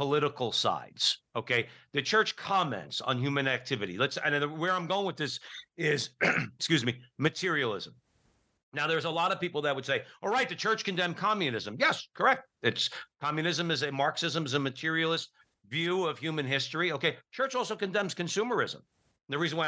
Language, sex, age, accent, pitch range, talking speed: English, male, 60-79, American, 145-190 Hz, 175 wpm